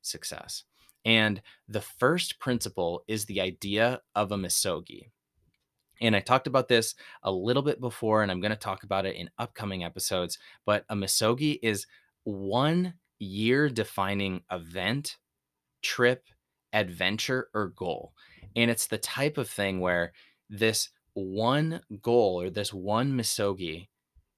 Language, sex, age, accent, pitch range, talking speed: English, male, 20-39, American, 95-115 Hz, 140 wpm